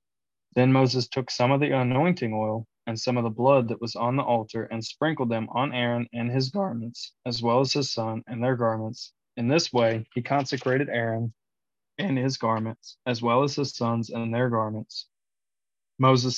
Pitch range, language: 115-130 Hz, English